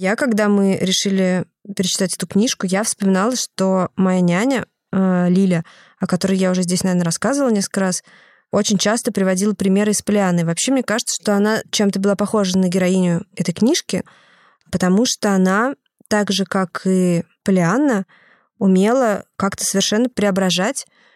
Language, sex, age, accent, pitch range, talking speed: Russian, female, 20-39, native, 180-205 Hz, 150 wpm